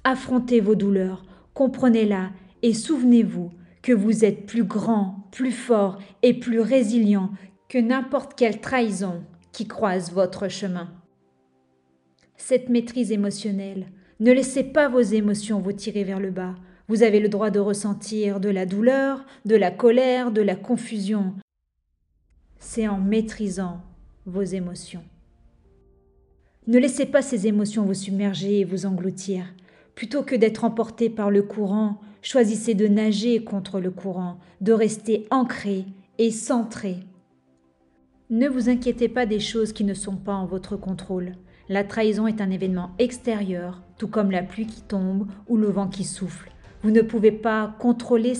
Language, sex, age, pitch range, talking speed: French, female, 40-59, 190-230 Hz, 150 wpm